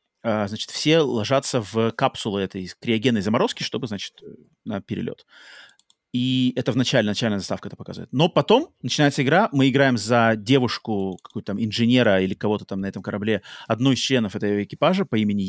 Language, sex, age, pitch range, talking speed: Russian, male, 30-49, 110-140 Hz, 170 wpm